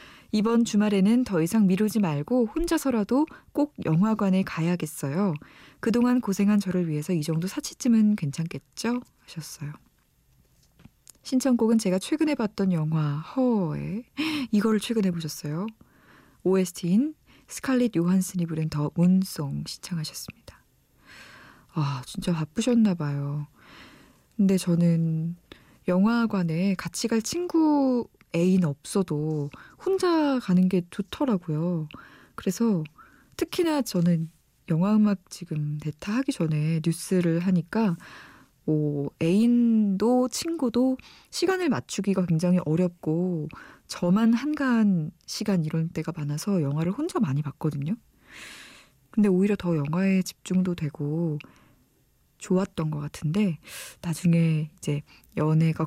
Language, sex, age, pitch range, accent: Korean, female, 20-39, 160-220 Hz, native